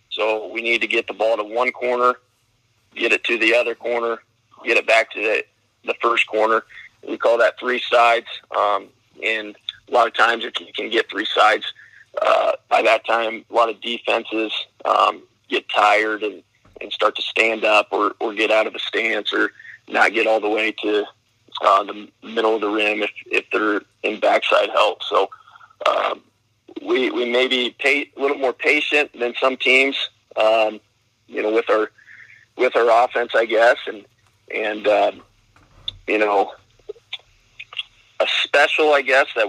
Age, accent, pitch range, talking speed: 40-59, American, 110-125 Hz, 180 wpm